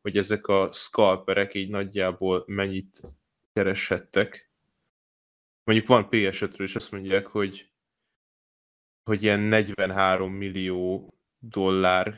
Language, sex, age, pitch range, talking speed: Hungarian, male, 10-29, 95-105 Hz, 105 wpm